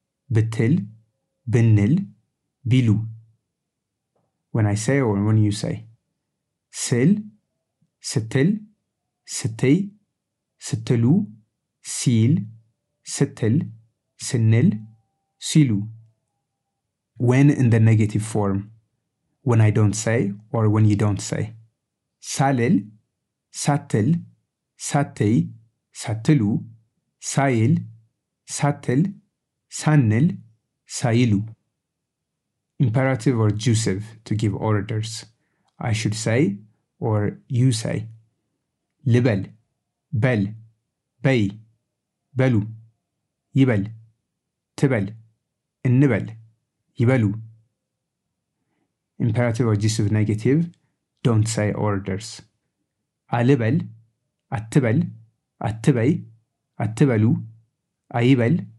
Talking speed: 75 wpm